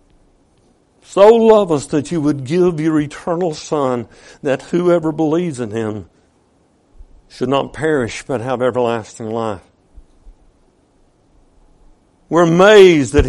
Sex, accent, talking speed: male, American, 115 wpm